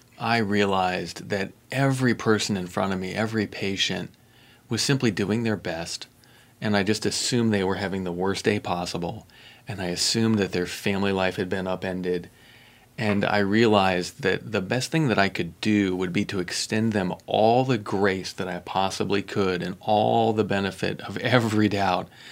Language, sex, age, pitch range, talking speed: English, male, 30-49, 95-115 Hz, 180 wpm